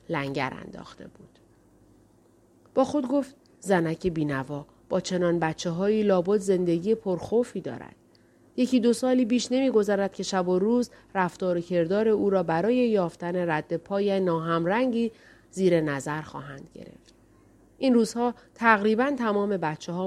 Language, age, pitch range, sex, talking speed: Persian, 30-49, 165-210 Hz, female, 130 wpm